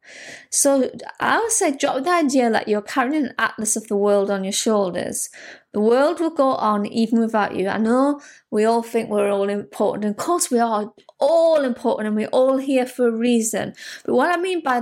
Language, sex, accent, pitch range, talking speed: English, female, British, 210-270 Hz, 215 wpm